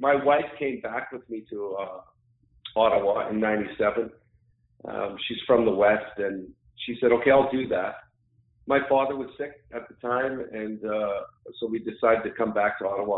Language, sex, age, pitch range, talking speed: English, male, 50-69, 105-125 Hz, 185 wpm